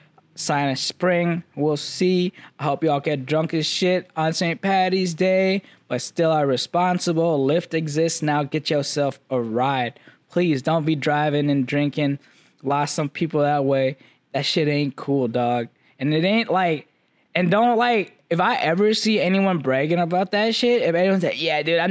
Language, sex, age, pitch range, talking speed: English, male, 10-29, 140-175 Hz, 180 wpm